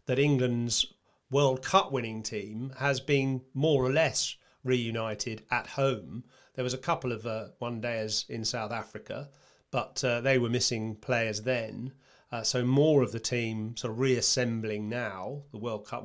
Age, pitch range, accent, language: 30-49, 115-140 Hz, British, English